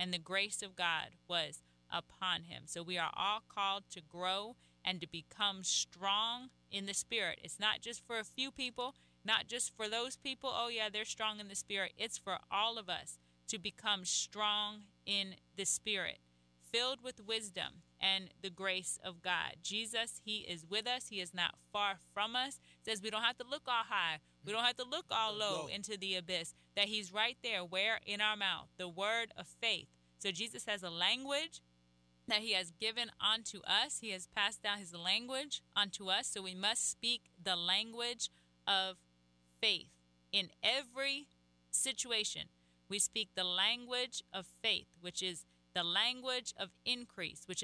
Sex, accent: female, American